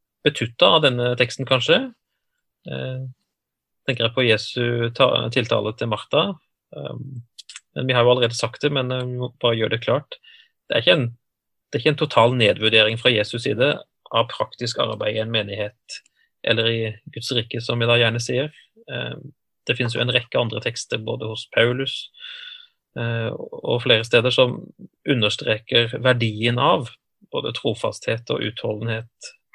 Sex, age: male, 30-49